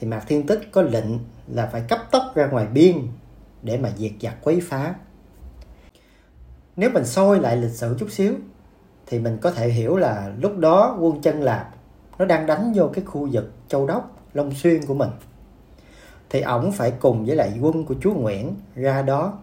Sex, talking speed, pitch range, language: male, 195 wpm, 105-165 Hz, Vietnamese